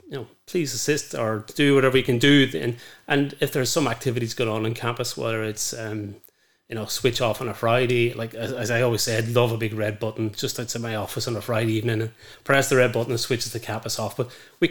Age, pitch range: 30-49, 110-130 Hz